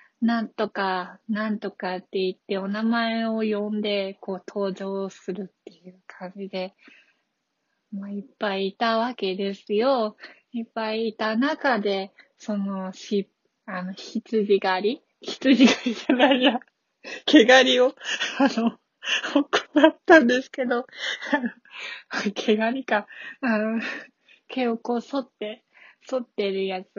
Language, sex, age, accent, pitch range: Japanese, female, 20-39, native, 195-245 Hz